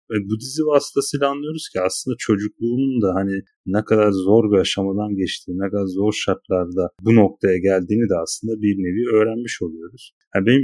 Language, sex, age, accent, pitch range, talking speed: Turkish, male, 40-59, native, 100-130 Hz, 170 wpm